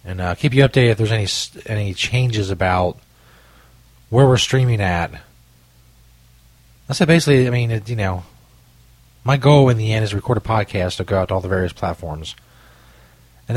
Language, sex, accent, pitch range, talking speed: English, male, American, 90-125 Hz, 180 wpm